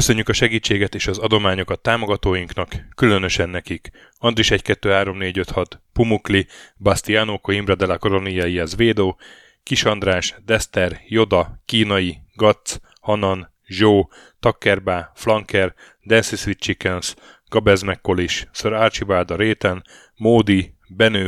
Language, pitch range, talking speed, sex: Hungarian, 95-115 Hz, 85 wpm, male